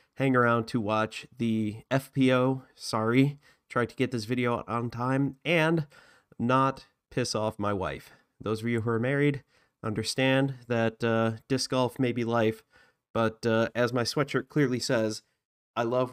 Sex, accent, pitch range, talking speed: male, American, 115-135 Hz, 160 wpm